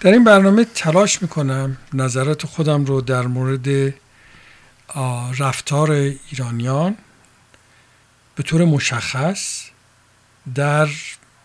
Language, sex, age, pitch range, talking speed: Persian, male, 50-69, 130-160 Hz, 85 wpm